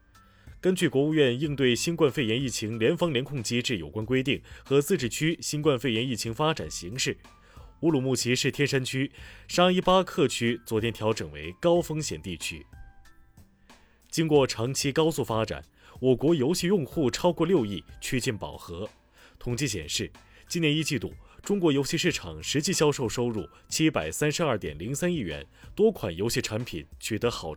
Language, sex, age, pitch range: Chinese, male, 20-39, 110-150 Hz